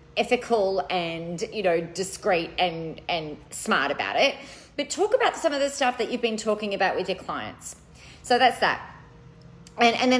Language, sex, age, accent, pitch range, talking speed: English, female, 30-49, Australian, 175-260 Hz, 180 wpm